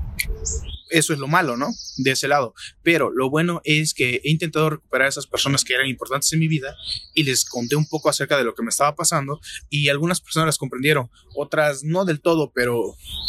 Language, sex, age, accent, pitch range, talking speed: Spanish, male, 30-49, Mexican, 130-155 Hz, 210 wpm